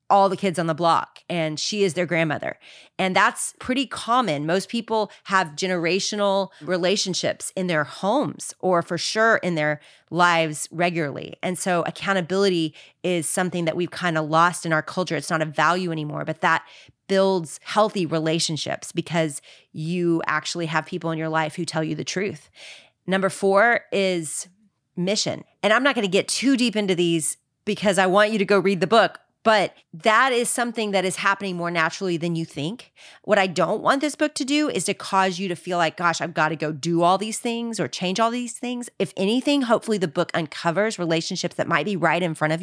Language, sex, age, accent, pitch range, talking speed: English, female, 30-49, American, 165-200 Hz, 200 wpm